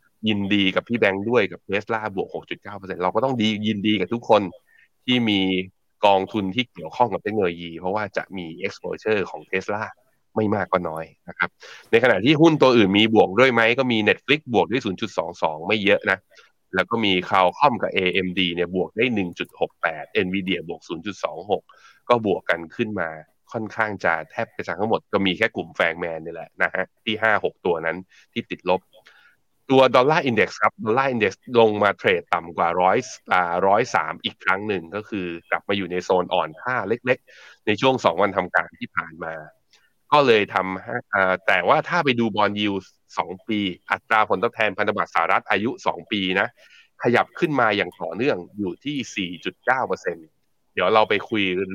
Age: 20-39